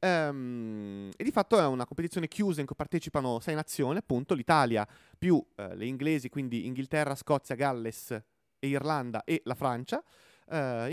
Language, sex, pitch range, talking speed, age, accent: Italian, male, 130-165 Hz, 160 wpm, 30-49, native